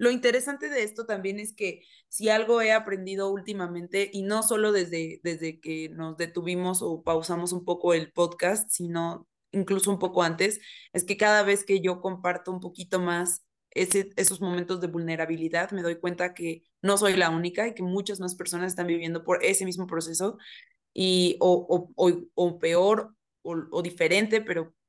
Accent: Mexican